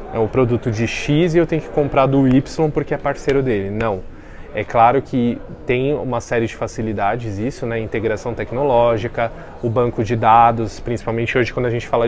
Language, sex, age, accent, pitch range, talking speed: Portuguese, male, 20-39, Brazilian, 110-130 Hz, 195 wpm